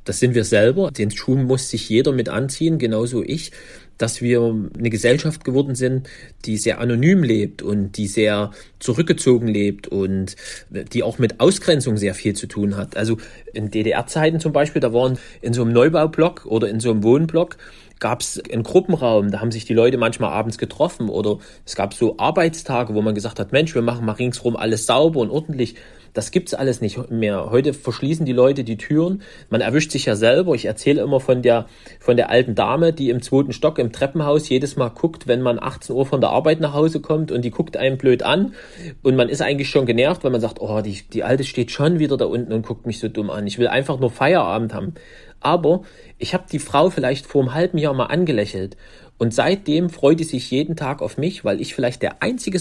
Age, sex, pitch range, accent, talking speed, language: 40-59, male, 115-155 Hz, German, 215 wpm, German